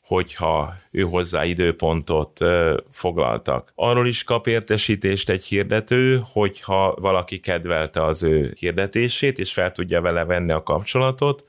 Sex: male